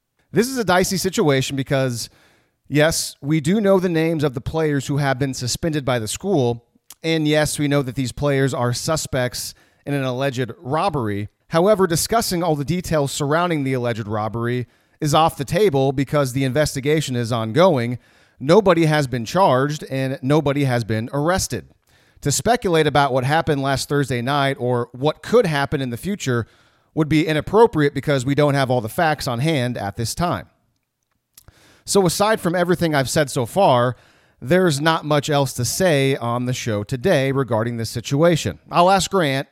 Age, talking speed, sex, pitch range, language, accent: 30-49, 175 wpm, male, 120-160 Hz, English, American